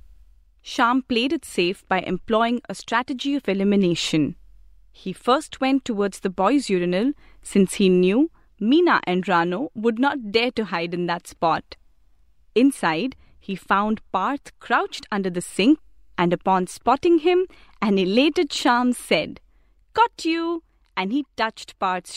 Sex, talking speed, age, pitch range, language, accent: female, 145 wpm, 30-49, 175-275 Hz, English, Indian